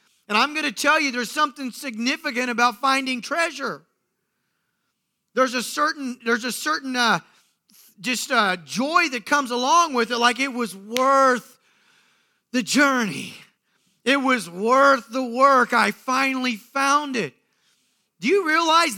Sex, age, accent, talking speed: male, 40-59, American, 145 wpm